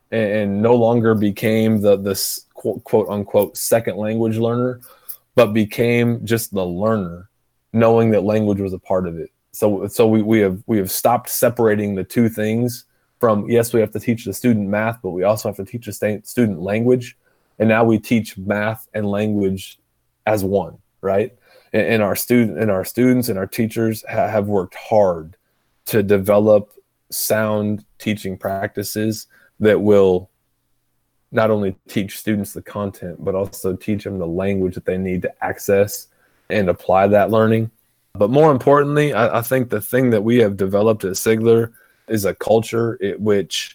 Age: 20-39